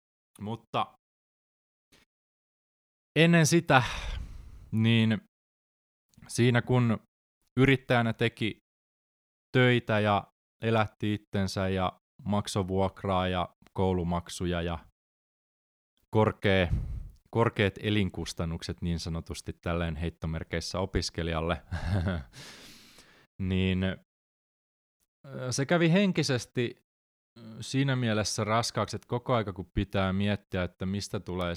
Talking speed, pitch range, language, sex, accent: 75 wpm, 90-110 Hz, Finnish, male, native